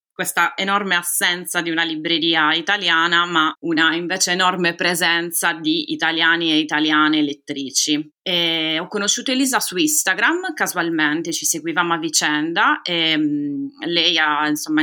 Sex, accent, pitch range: female, native, 155-195 Hz